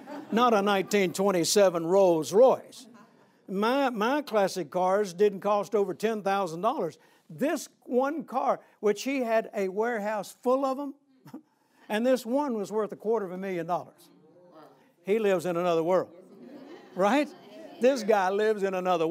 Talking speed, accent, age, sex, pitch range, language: 145 wpm, American, 60-79, male, 185-250 Hz, English